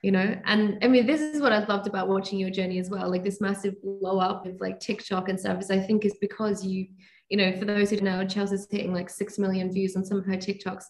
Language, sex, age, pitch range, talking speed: English, female, 20-39, 190-205 Hz, 275 wpm